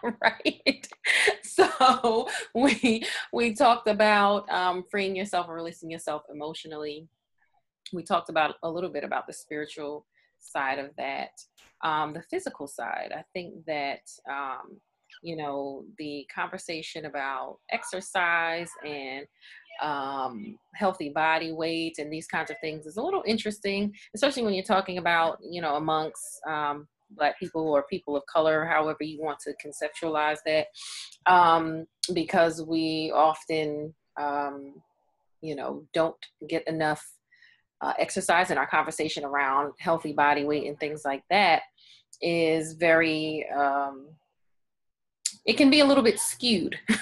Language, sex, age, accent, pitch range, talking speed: English, female, 30-49, American, 150-205 Hz, 135 wpm